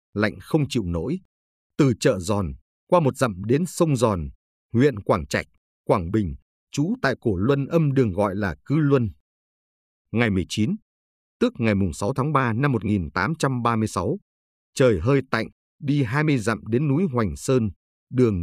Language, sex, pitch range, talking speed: Vietnamese, male, 90-135 Hz, 160 wpm